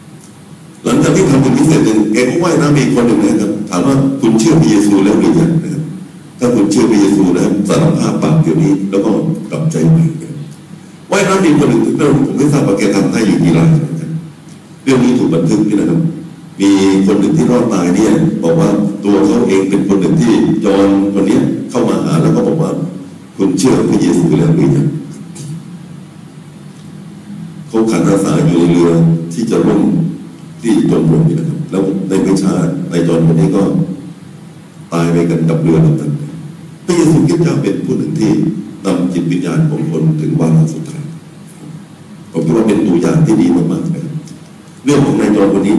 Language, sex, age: Thai, male, 60-79